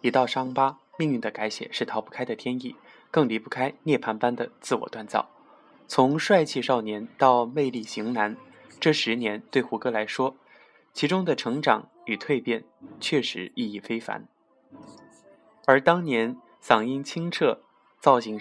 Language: Chinese